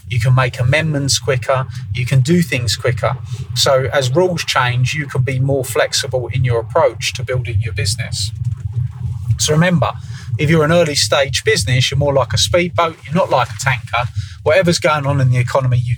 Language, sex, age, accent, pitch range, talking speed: English, male, 30-49, British, 125-145 Hz, 190 wpm